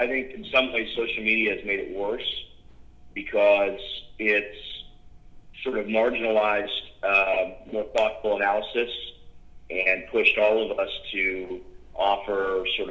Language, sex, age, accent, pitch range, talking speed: English, male, 40-59, American, 95-120 Hz, 130 wpm